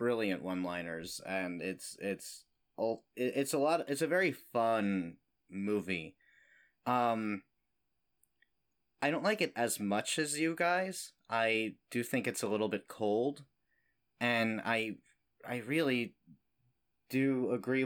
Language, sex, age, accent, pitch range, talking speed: English, male, 30-49, American, 95-115 Hz, 130 wpm